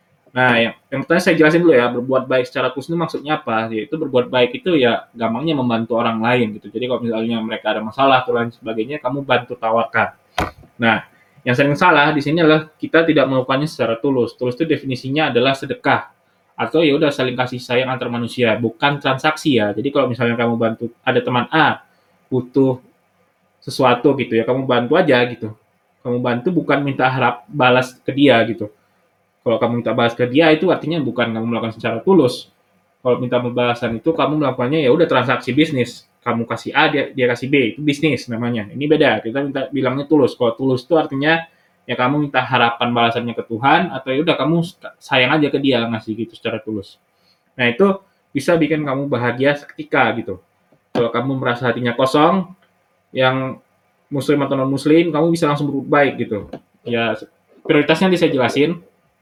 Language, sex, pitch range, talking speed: Indonesian, male, 120-150 Hz, 180 wpm